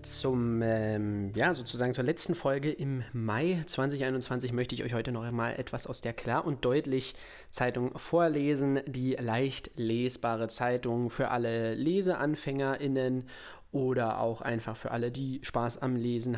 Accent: German